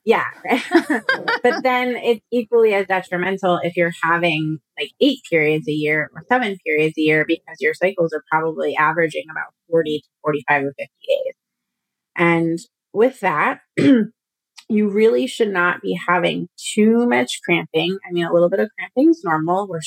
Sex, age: female, 30-49